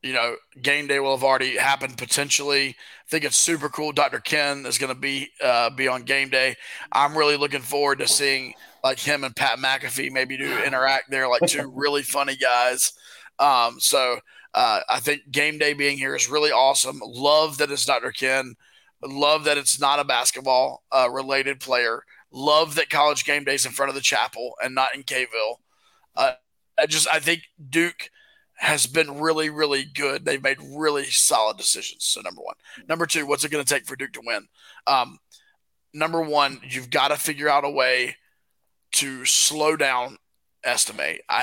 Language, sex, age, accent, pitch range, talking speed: English, male, 20-39, American, 135-150 Hz, 185 wpm